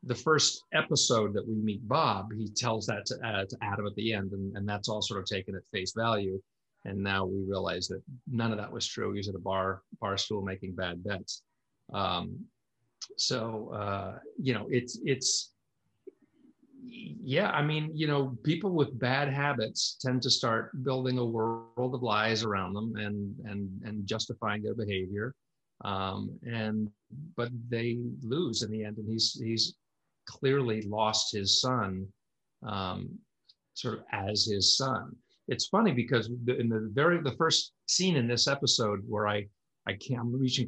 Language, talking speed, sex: English, 175 wpm, male